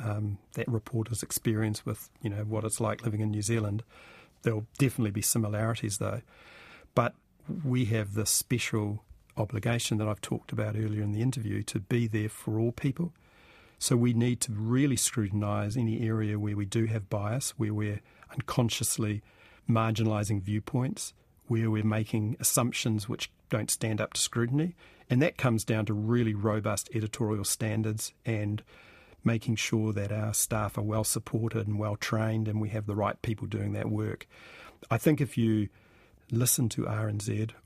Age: 40-59